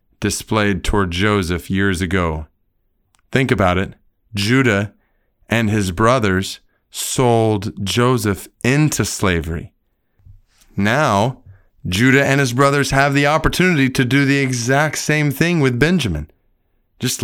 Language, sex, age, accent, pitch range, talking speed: English, male, 30-49, American, 90-115 Hz, 115 wpm